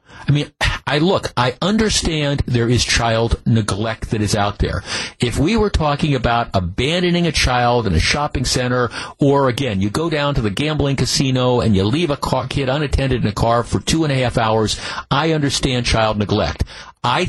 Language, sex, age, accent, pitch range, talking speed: English, male, 50-69, American, 110-155 Hz, 190 wpm